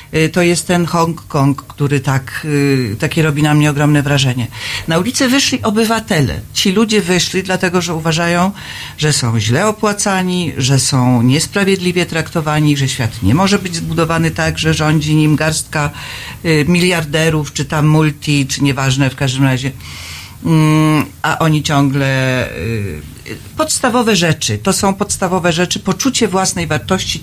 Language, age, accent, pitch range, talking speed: Polish, 40-59, native, 135-185 Hz, 135 wpm